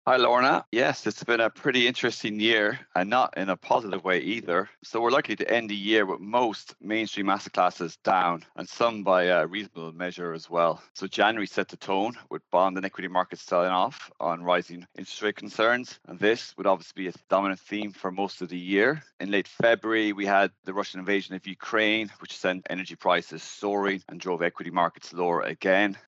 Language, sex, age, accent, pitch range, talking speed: English, male, 30-49, Irish, 90-105 Hz, 200 wpm